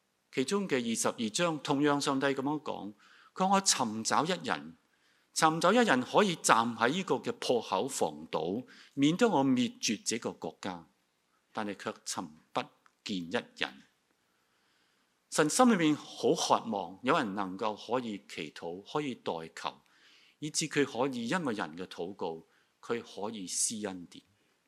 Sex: male